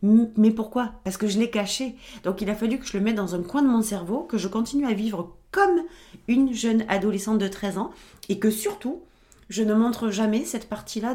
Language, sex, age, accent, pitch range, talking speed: French, female, 30-49, French, 175-225 Hz, 225 wpm